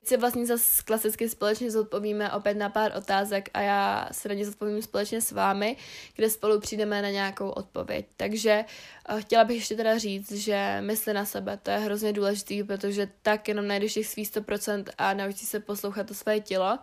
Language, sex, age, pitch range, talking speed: Czech, female, 20-39, 200-220 Hz, 190 wpm